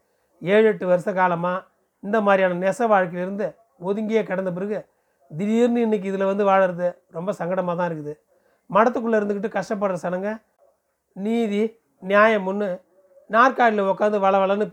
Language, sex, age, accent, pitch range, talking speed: Tamil, male, 40-59, native, 185-215 Hz, 125 wpm